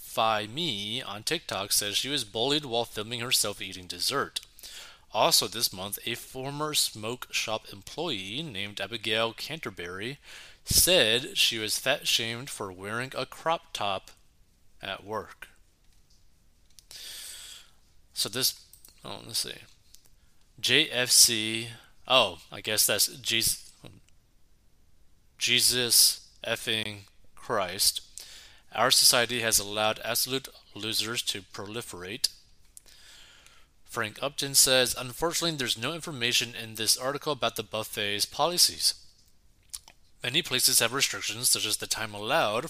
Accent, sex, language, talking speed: American, male, English, 110 wpm